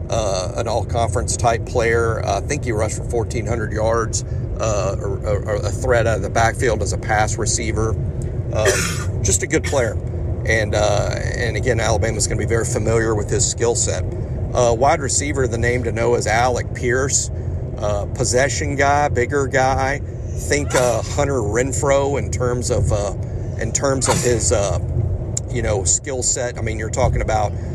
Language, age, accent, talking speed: English, 50-69, American, 180 wpm